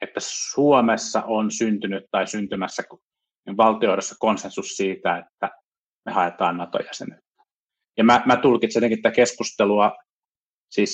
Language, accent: Finnish, native